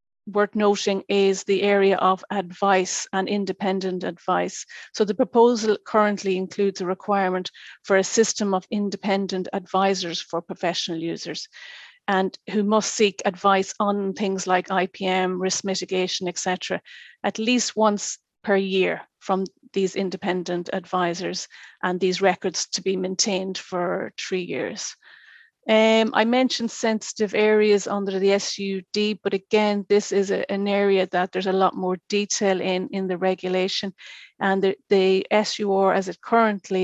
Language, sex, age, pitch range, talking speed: English, female, 30-49, 185-205 Hz, 145 wpm